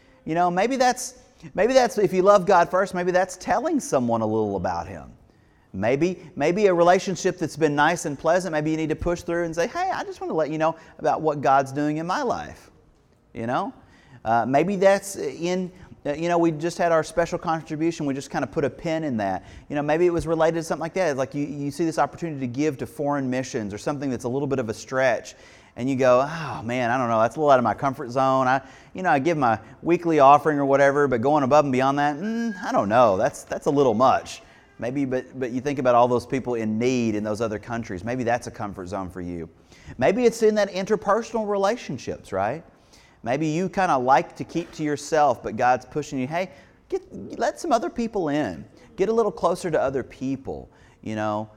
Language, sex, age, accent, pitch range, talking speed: English, male, 30-49, American, 125-180 Hz, 235 wpm